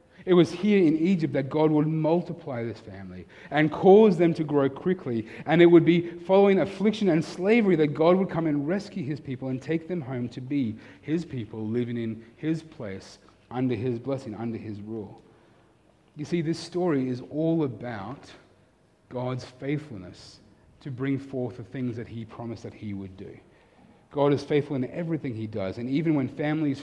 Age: 30-49